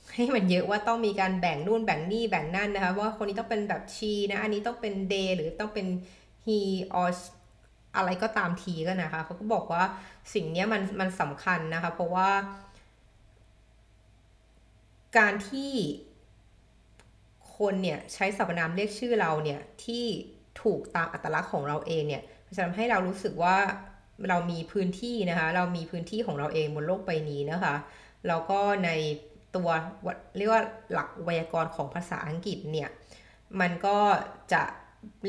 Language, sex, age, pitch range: Thai, female, 20-39, 150-200 Hz